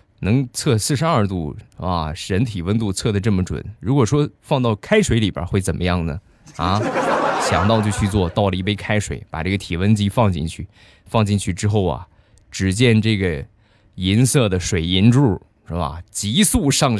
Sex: male